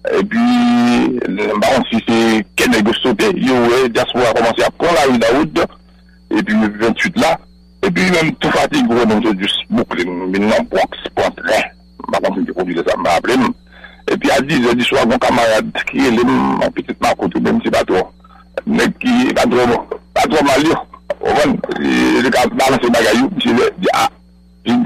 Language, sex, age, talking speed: English, male, 60-79, 170 wpm